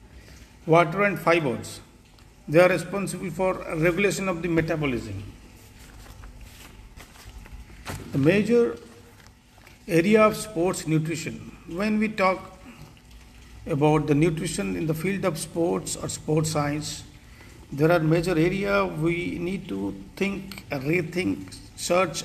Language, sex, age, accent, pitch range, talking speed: English, male, 50-69, Indian, 115-175 Hz, 110 wpm